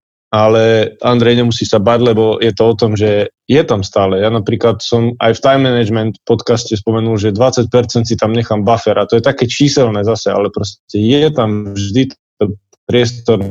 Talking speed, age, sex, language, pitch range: 185 wpm, 20-39, male, Slovak, 105-125 Hz